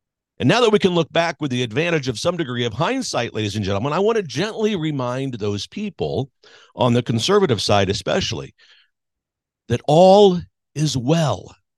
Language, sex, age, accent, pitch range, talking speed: English, male, 50-69, American, 120-170 Hz, 175 wpm